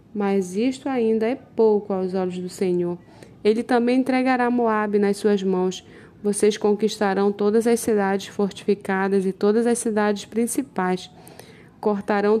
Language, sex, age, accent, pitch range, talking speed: Portuguese, female, 10-29, Brazilian, 200-240 Hz, 135 wpm